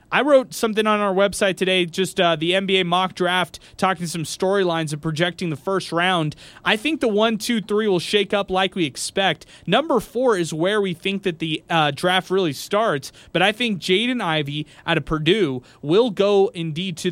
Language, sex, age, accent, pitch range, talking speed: English, male, 20-39, American, 155-195 Hz, 200 wpm